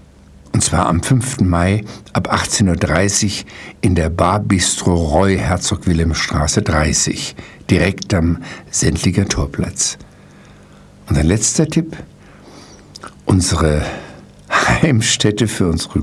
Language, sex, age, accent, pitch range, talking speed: German, male, 60-79, German, 85-110 Hz, 105 wpm